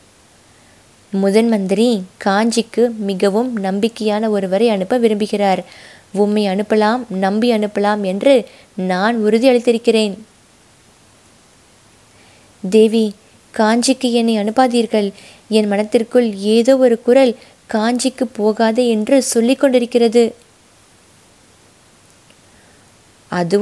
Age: 20-39